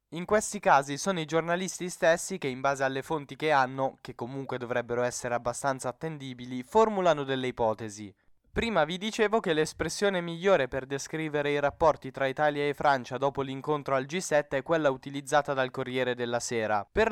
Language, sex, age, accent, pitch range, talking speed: Italian, male, 10-29, native, 135-170 Hz, 170 wpm